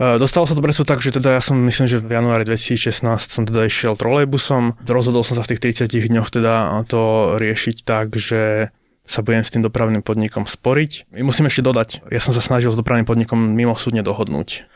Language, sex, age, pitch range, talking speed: Slovak, male, 20-39, 110-125 Hz, 210 wpm